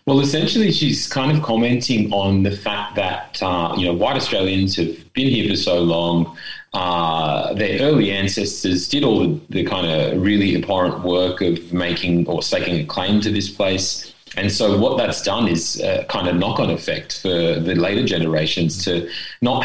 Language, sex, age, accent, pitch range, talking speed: English, male, 30-49, Australian, 85-110 Hz, 185 wpm